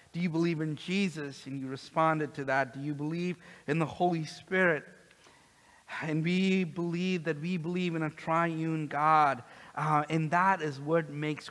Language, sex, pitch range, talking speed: English, male, 145-170 Hz, 170 wpm